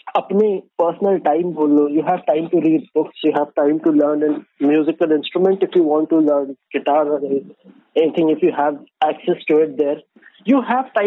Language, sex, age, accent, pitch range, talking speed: Hindi, male, 20-39, native, 150-205 Hz, 130 wpm